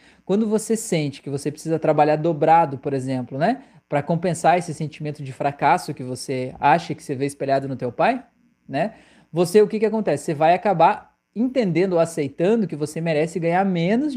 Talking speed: 185 wpm